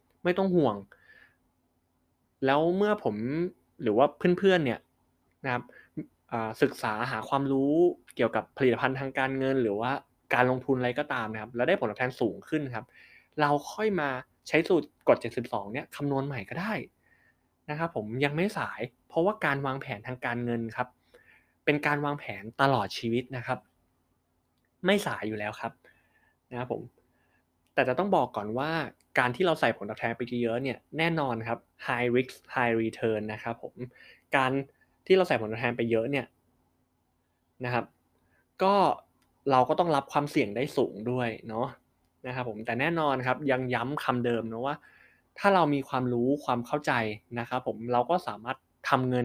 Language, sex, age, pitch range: Thai, male, 20-39, 110-140 Hz